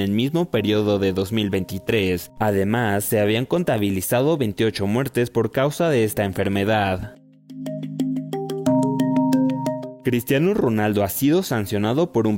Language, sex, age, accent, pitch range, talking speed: Spanish, male, 20-39, Mexican, 100-130 Hz, 110 wpm